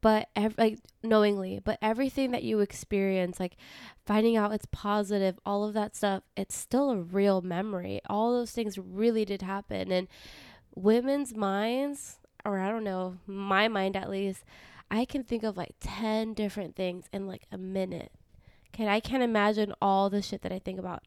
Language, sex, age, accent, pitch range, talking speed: English, female, 20-39, American, 190-220 Hz, 175 wpm